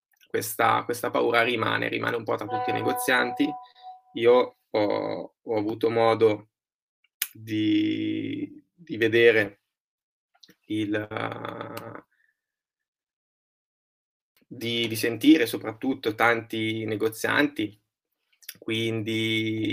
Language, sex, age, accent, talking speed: Italian, male, 20-39, native, 80 wpm